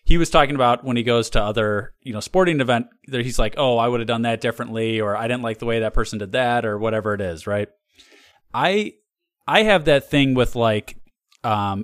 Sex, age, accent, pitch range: male, 20-39, American, 110-135 Hz